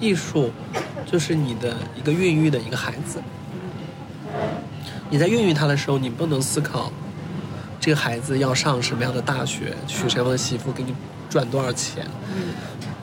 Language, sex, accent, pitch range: Chinese, male, native, 135-165 Hz